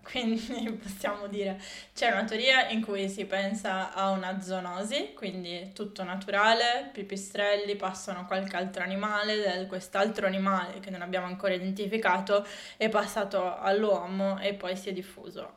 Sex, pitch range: female, 190-215 Hz